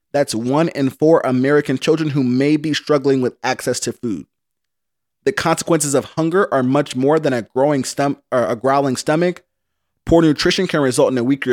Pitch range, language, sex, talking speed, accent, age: 135-165 Hz, English, male, 185 wpm, American, 30-49